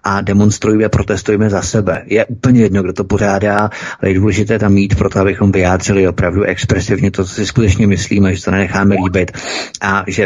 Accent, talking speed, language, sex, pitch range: native, 185 wpm, Czech, male, 95-110 Hz